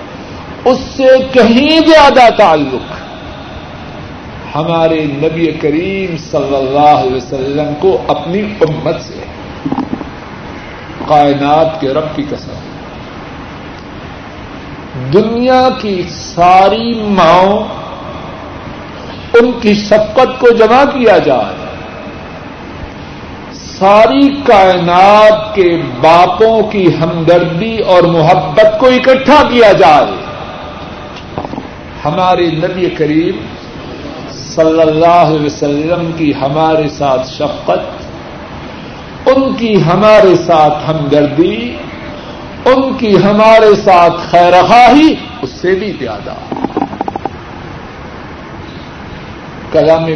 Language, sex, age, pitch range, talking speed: Urdu, male, 60-79, 150-215 Hz, 90 wpm